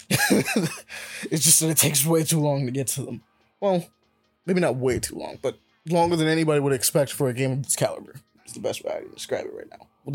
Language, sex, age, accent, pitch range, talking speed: English, male, 20-39, American, 120-150 Hz, 240 wpm